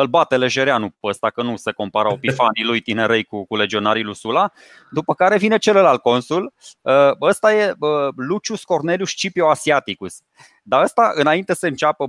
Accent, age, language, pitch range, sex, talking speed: native, 20-39, Romanian, 140-210 Hz, male, 160 wpm